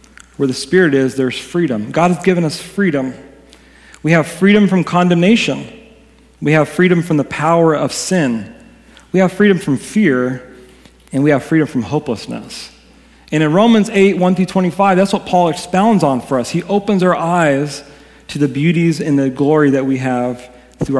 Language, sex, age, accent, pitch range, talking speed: English, male, 40-59, American, 145-190 Hz, 180 wpm